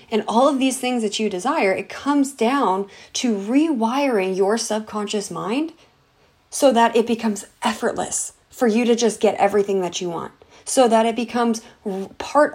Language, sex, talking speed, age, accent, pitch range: English, female, 165 wpm, 30-49, American, 200-245 Hz